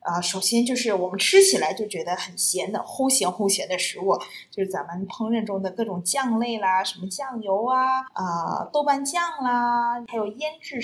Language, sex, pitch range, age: Chinese, female, 195-260 Hz, 20-39